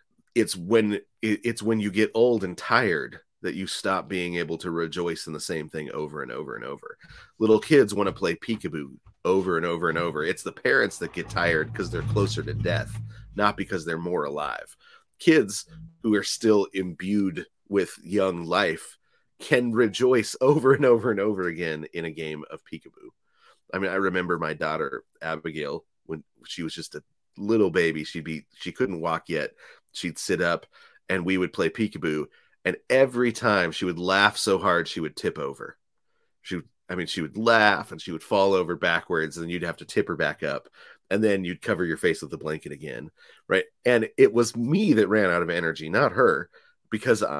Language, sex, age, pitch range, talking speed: English, male, 30-49, 85-115 Hz, 200 wpm